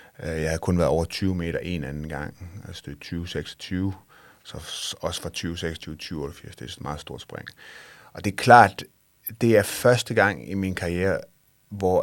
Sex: male